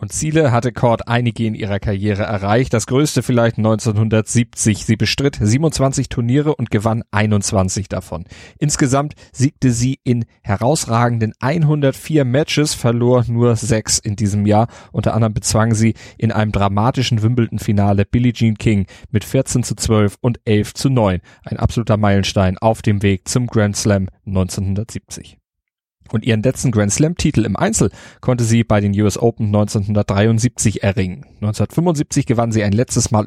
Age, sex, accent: 30-49, male, German